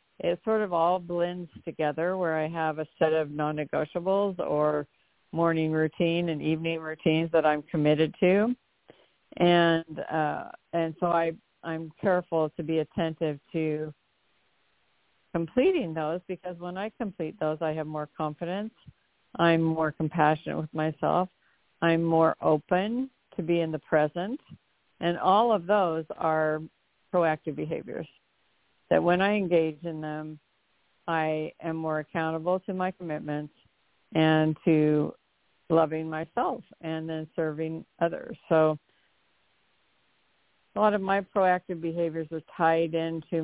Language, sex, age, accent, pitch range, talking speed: English, female, 50-69, American, 155-175 Hz, 135 wpm